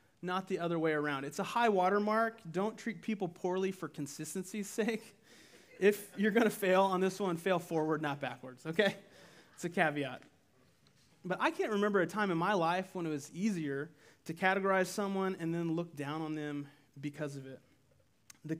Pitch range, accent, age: 150-195 Hz, American, 30-49